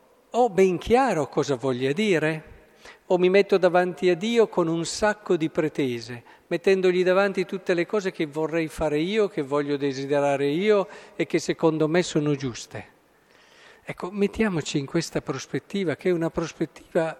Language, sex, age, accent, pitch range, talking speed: Italian, male, 50-69, native, 135-170 Hz, 155 wpm